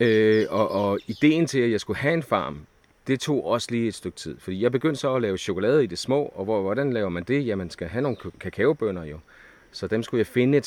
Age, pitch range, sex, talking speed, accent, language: 30-49, 90-115 Hz, male, 270 wpm, native, Danish